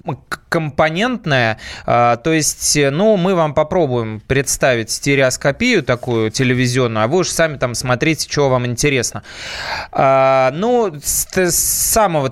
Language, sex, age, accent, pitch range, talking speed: Russian, male, 20-39, native, 130-180 Hz, 110 wpm